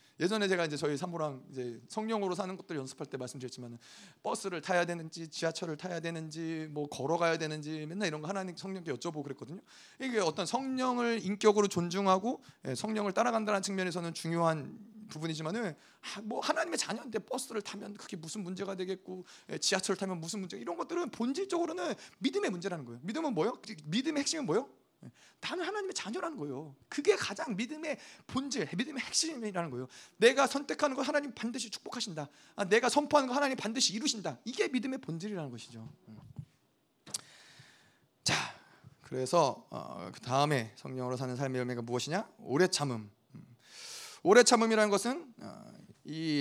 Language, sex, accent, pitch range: Korean, male, native, 155-235 Hz